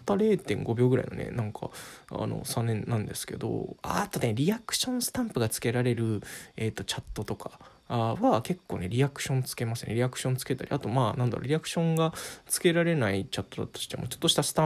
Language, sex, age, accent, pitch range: Japanese, male, 20-39, native, 110-160 Hz